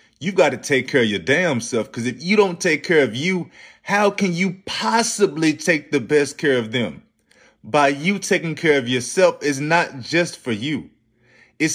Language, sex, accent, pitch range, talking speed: English, male, American, 115-160 Hz, 200 wpm